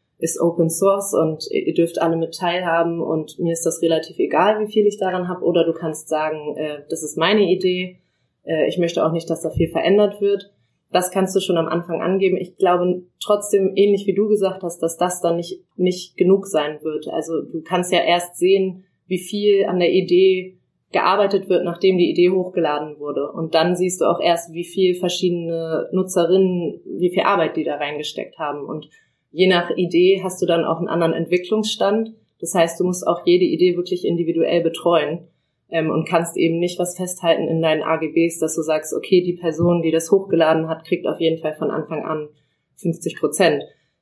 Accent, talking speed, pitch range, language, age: German, 195 wpm, 160-185 Hz, German, 20-39